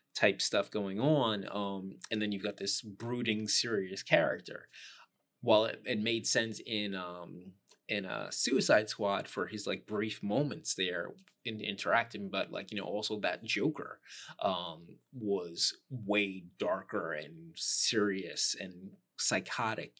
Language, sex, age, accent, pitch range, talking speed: English, male, 20-39, American, 95-125 Hz, 140 wpm